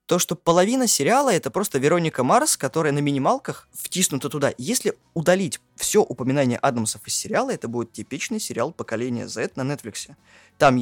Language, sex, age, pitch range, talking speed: Russian, male, 20-39, 110-150 Hz, 160 wpm